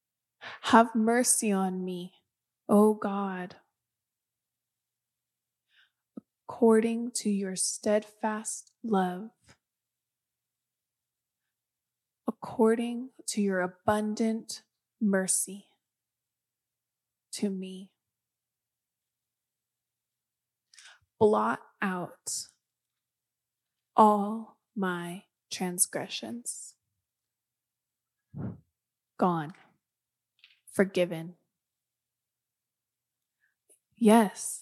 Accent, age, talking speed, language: American, 20-39, 45 wpm, English